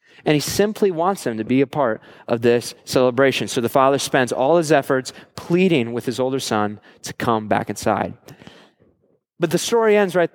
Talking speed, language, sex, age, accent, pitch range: 190 wpm, English, male, 20-39, American, 135-190 Hz